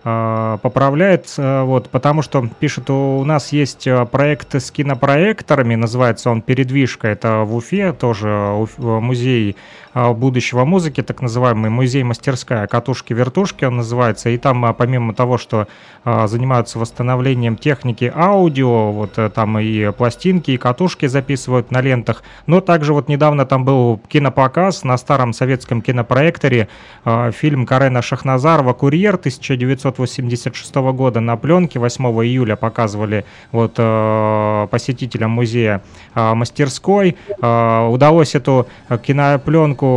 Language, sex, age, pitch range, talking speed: Russian, male, 30-49, 115-140 Hz, 125 wpm